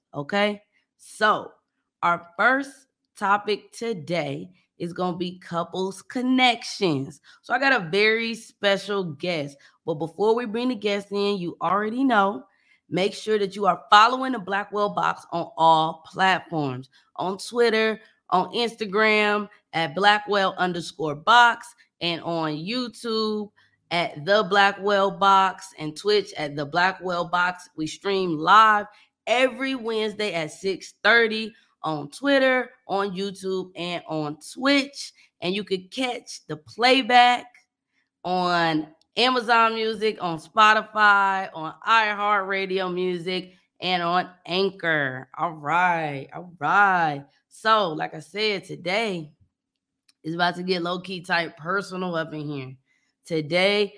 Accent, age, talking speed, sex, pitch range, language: American, 20-39, 125 wpm, female, 170-215 Hz, English